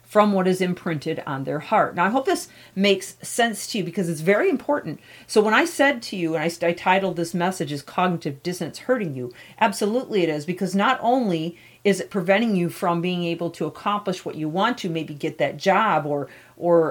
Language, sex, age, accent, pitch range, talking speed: English, female, 40-59, American, 170-210 Hz, 215 wpm